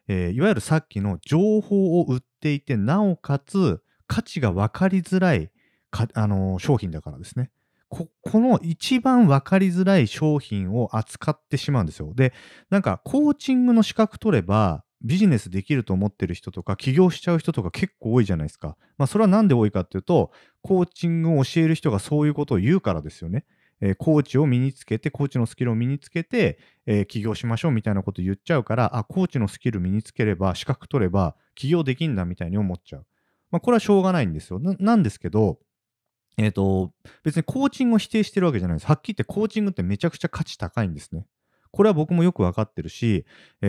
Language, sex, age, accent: Japanese, male, 40-59, native